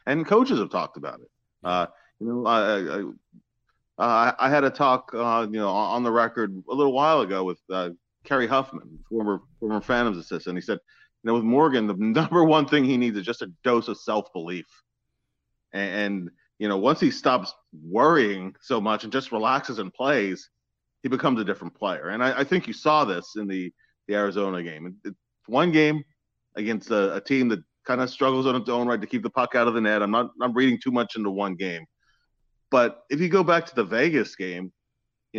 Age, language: 30-49, English